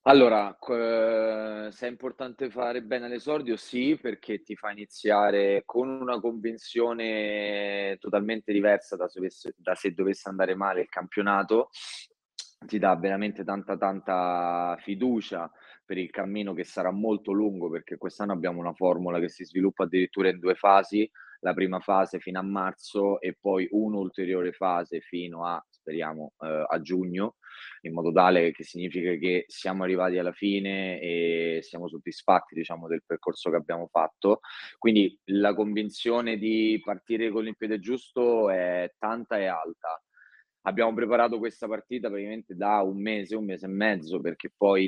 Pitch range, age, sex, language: 90-110 Hz, 20-39, male, Italian